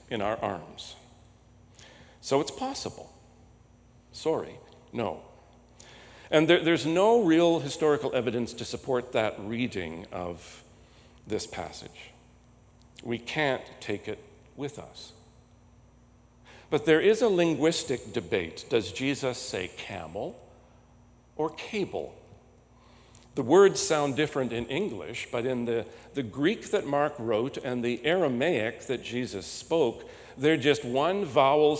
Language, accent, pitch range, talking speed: English, American, 110-145 Hz, 120 wpm